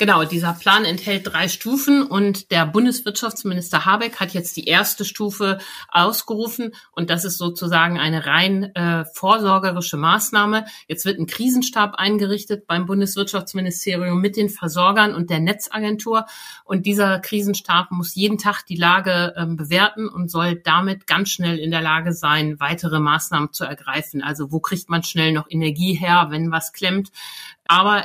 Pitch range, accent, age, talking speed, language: 160-195 Hz, German, 60-79, 155 wpm, German